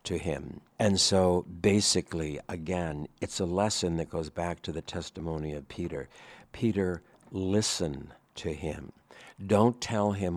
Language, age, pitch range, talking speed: English, 60-79, 85-105 Hz, 135 wpm